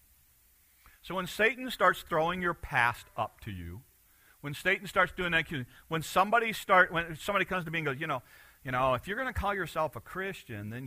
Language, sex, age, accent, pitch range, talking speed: English, male, 50-69, American, 120-195 Hz, 210 wpm